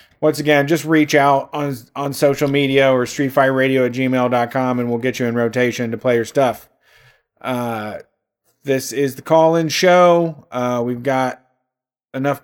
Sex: male